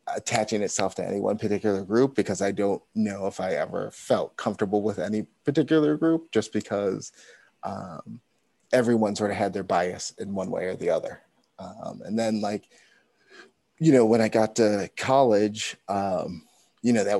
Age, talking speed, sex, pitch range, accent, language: 30-49, 175 wpm, male, 100-115 Hz, American, English